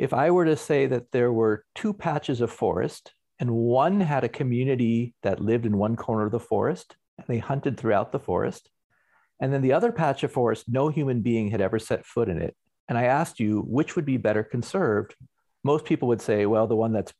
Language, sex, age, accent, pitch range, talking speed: English, male, 50-69, American, 110-145 Hz, 225 wpm